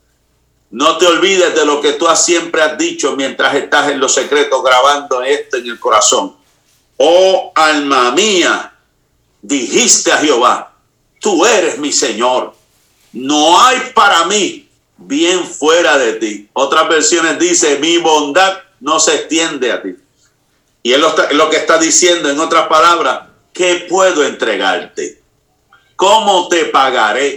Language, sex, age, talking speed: Spanish, male, 50-69, 140 wpm